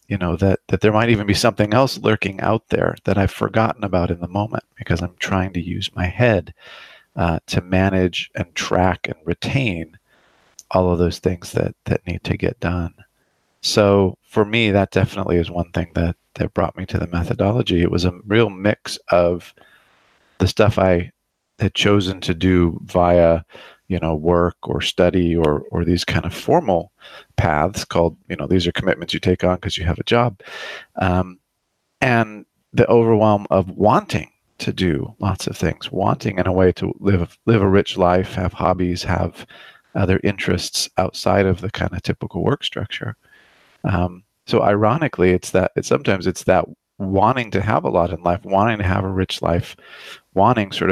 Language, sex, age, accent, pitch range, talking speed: English, male, 40-59, American, 90-105 Hz, 185 wpm